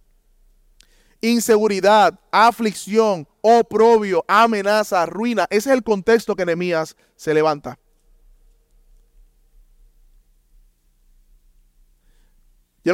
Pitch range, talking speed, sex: 160-220 Hz, 65 wpm, male